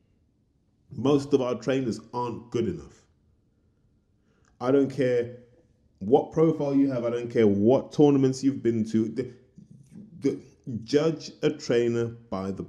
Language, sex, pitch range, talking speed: English, male, 100-125 Hz, 130 wpm